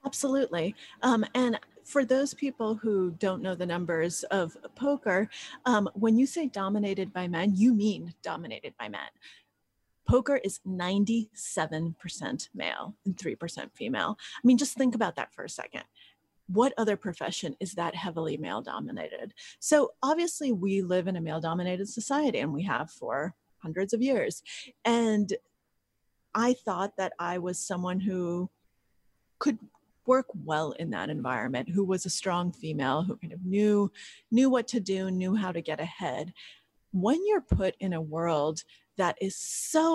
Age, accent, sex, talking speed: 30-49, American, female, 160 wpm